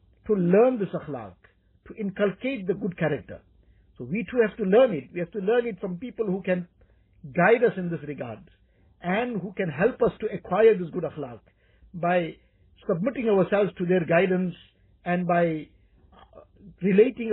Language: English